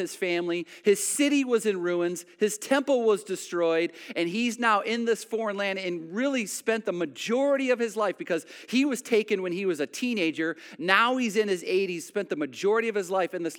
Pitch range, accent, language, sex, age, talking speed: 175-225 Hz, American, English, male, 40-59, 210 wpm